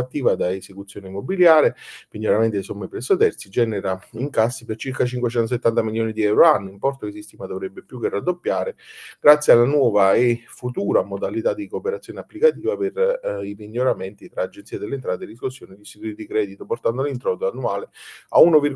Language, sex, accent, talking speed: Italian, male, native, 170 wpm